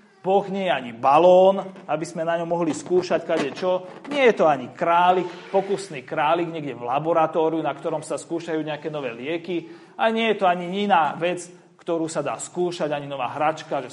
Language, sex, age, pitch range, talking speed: Slovak, male, 40-59, 155-205 Hz, 190 wpm